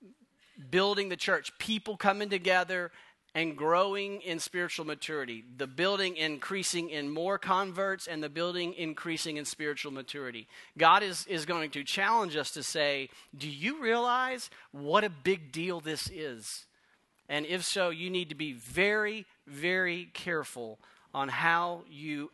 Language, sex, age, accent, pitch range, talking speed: English, male, 40-59, American, 145-190 Hz, 150 wpm